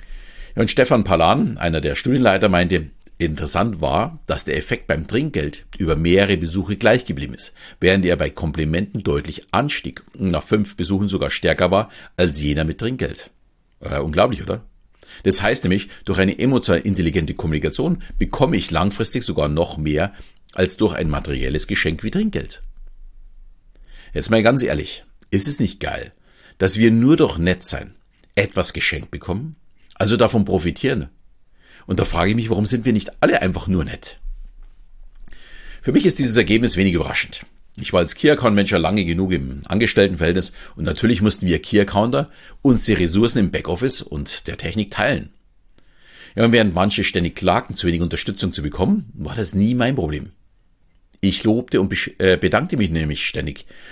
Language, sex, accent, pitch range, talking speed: German, male, German, 85-110 Hz, 165 wpm